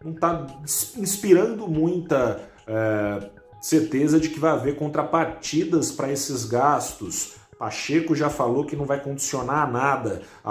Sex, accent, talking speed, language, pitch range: male, Brazilian, 130 wpm, Portuguese, 110-145 Hz